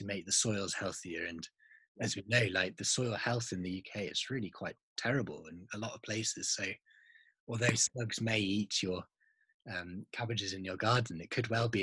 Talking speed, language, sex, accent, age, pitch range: 210 wpm, English, male, British, 20-39, 95-120 Hz